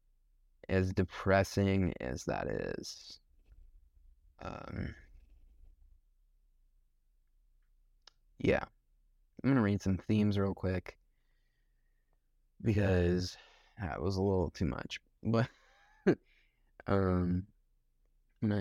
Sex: male